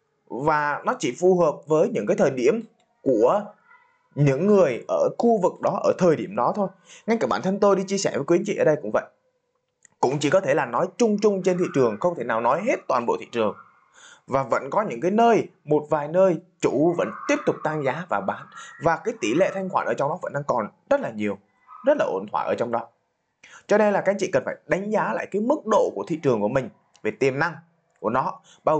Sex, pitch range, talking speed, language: male, 150-225 Hz, 255 wpm, Vietnamese